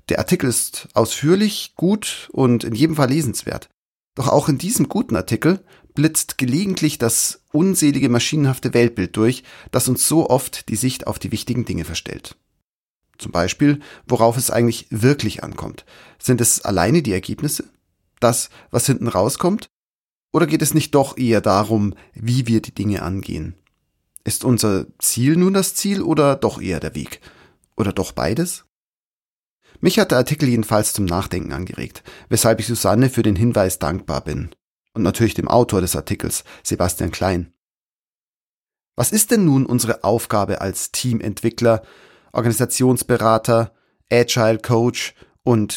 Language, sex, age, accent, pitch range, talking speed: German, male, 40-59, German, 100-140 Hz, 145 wpm